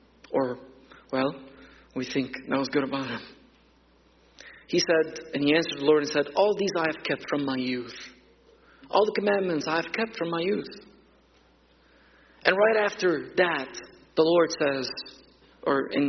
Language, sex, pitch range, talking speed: English, male, 135-190 Hz, 160 wpm